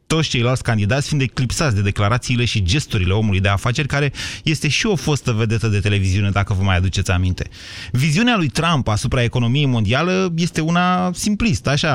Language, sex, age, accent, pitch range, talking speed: Romanian, male, 30-49, native, 120-175 Hz, 170 wpm